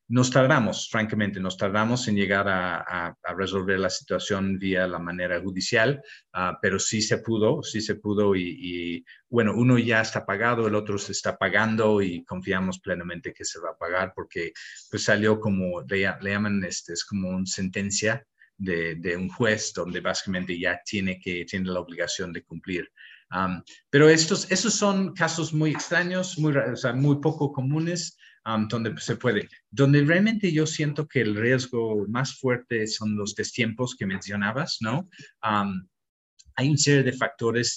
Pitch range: 95-125 Hz